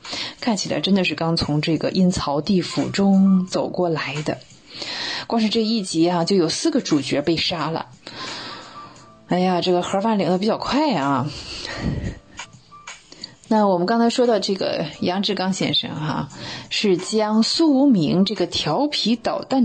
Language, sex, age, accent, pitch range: Chinese, female, 20-39, native, 165-230 Hz